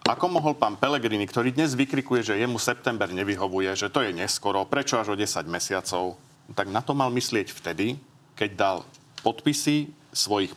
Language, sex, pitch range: Slovak, male, 95-125 Hz